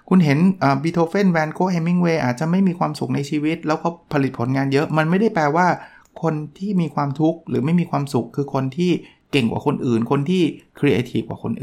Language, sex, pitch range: Thai, male, 120-170 Hz